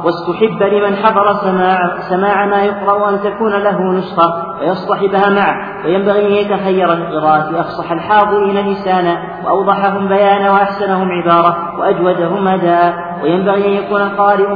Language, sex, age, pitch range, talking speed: Arabic, male, 40-59, 195-205 Hz, 125 wpm